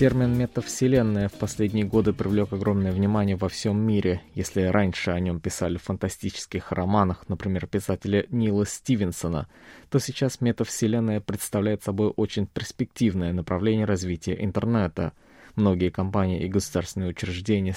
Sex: male